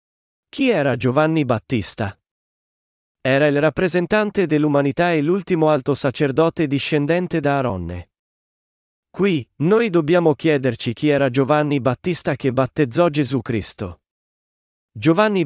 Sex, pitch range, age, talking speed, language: male, 130-165 Hz, 40-59, 110 wpm, Italian